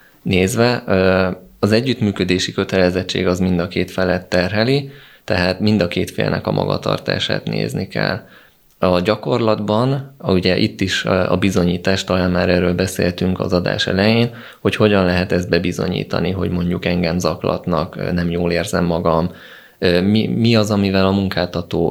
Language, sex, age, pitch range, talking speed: Hungarian, male, 20-39, 90-95 Hz, 140 wpm